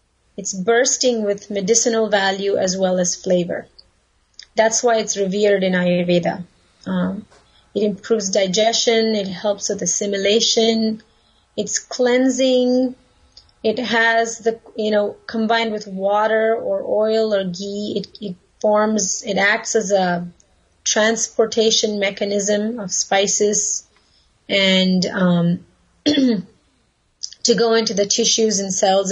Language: English